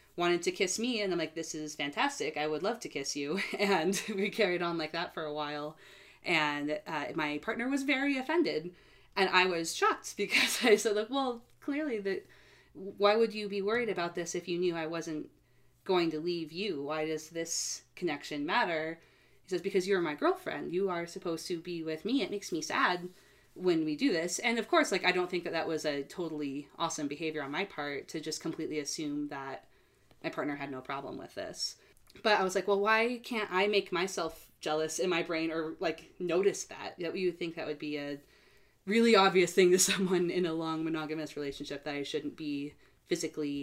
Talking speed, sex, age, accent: 210 wpm, female, 20-39, American